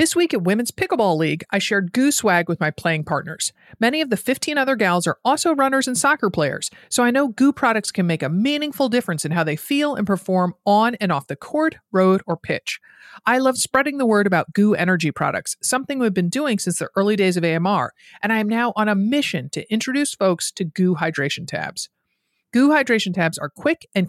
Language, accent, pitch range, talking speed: English, American, 175-250 Hz, 220 wpm